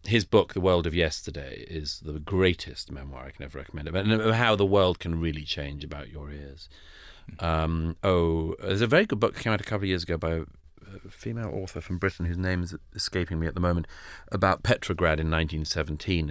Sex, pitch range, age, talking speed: male, 75-95 Hz, 40-59, 210 wpm